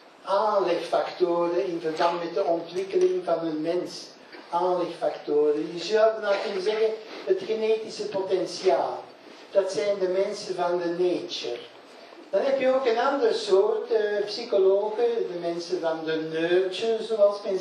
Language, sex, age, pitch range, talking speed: Dutch, male, 60-79, 175-260 Hz, 130 wpm